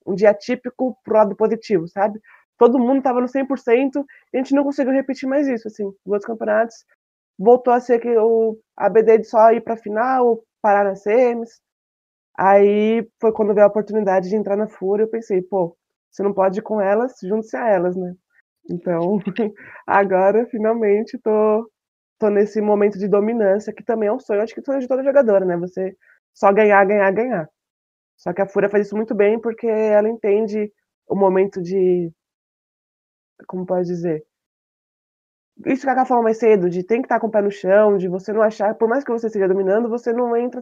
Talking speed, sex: 195 wpm, female